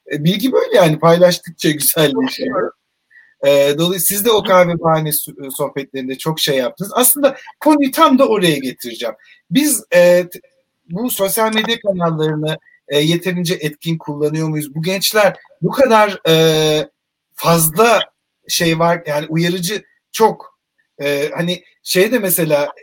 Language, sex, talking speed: Turkish, male, 130 wpm